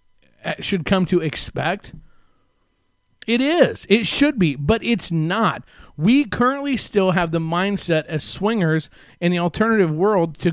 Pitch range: 150-195 Hz